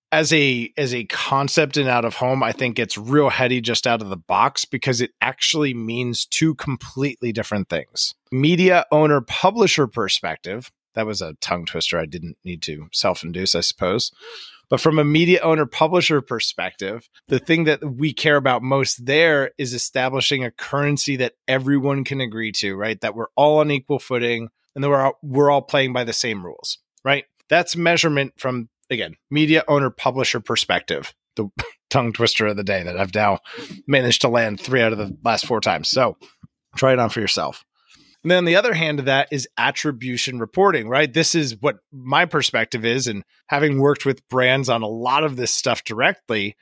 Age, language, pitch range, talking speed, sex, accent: 30-49, English, 120-150 Hz, 190 wpm, male, American